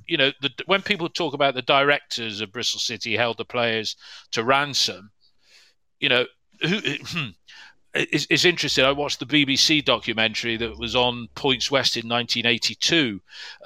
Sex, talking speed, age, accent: male, 160 wpm, 40-59, British